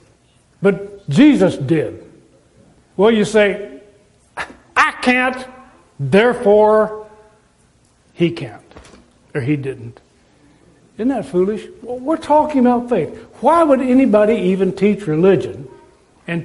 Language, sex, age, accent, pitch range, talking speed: English, male, 60-79, American, 175-240 Hz, 100 wpm